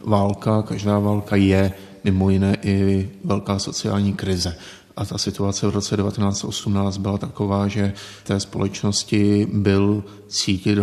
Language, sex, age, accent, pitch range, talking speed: Czech, male, 30-49, native, 100-105 Hz, 125 wpm